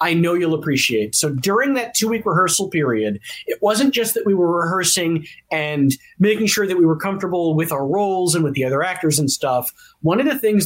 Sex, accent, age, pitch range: male, American, 40-59, 165-220 Hz